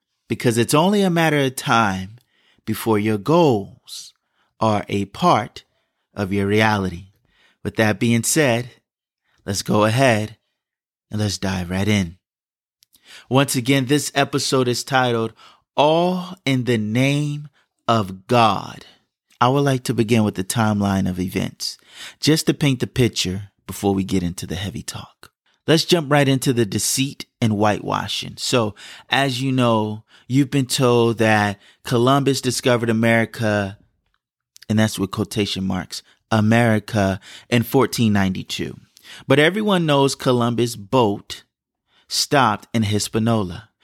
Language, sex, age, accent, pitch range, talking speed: English, male, 30-49, American, 105-135 Hz, 135 wpm